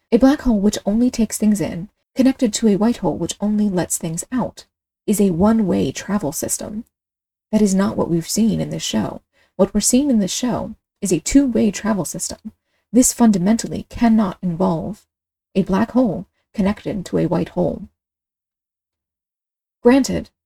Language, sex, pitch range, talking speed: English, female, 175-230 Hz, 165 wpm